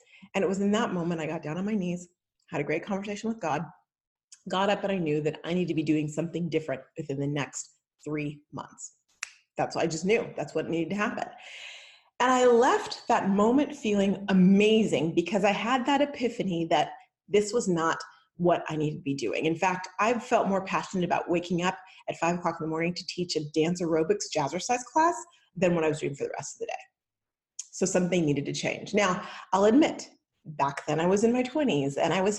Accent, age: American, 30-49